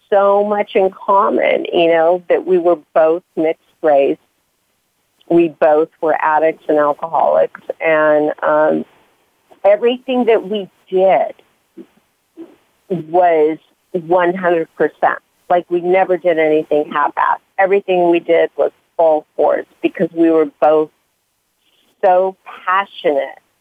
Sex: female